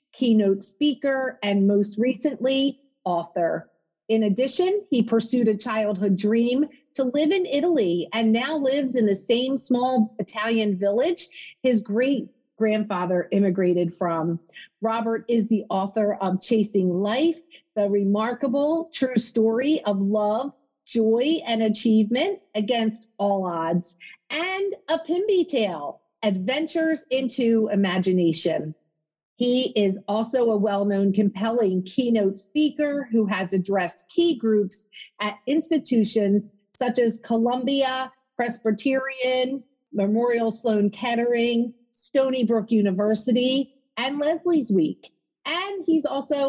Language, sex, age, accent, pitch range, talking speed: English, female, 40-59, American, 205-270 Hz, 110 wpm